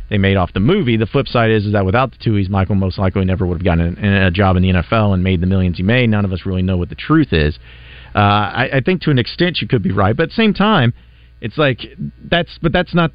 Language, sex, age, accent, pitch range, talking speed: English, male, 40-59, American, 95-125 Hz, 290 wpm